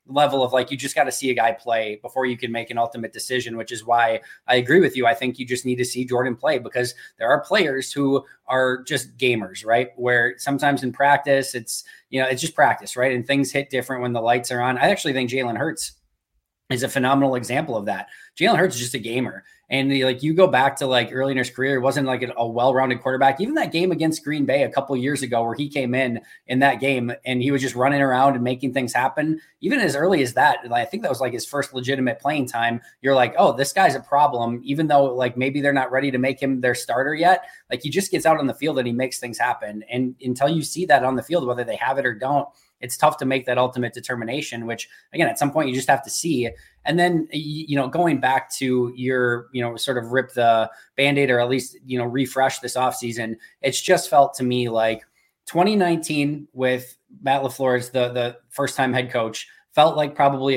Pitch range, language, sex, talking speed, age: 120-140 Hz, English, male, 250 wpm, 20-39